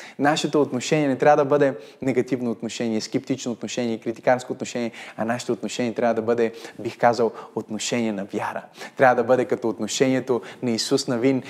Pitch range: 130-165 Hz